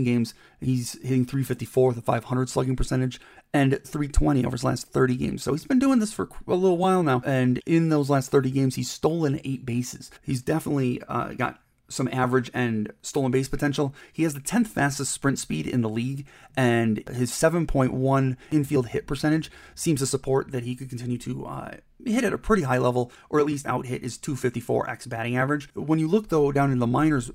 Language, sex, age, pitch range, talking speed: English, male, 30-49, 125-145 Hz, 205 wpm